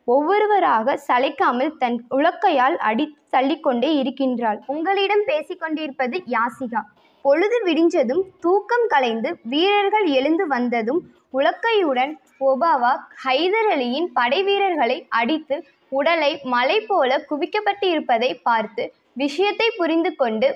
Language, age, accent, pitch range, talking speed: Tamil, 20-39, native, 255-360 Hz, 90 wpm